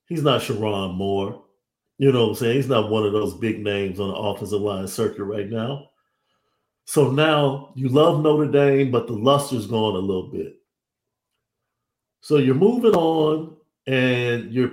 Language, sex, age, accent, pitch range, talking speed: English, male, 50-69, American, 110-140 Hz, 170 wpm